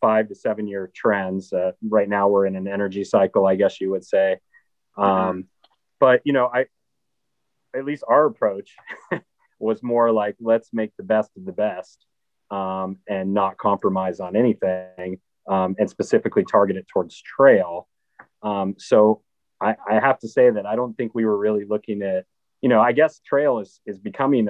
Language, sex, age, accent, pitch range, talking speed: English, male, 30-49, American, 95-115 Hz, 180 wpm